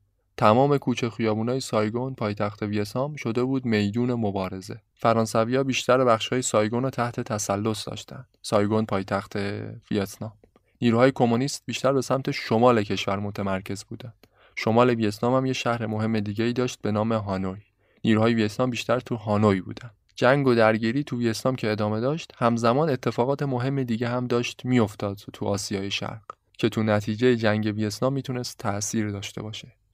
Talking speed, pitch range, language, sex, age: 145 wpm, 105-125 Hz, Persian, male, 20-39